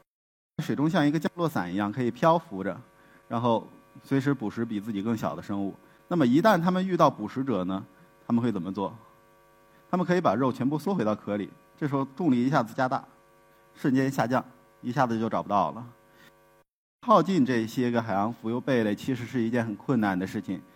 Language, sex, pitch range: Chinese, male, 115-170 Hz